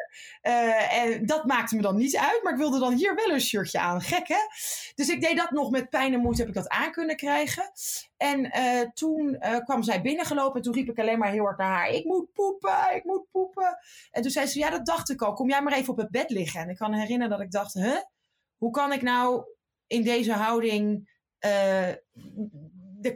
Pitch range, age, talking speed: 220-290 Hz, 20-39, 235 wpm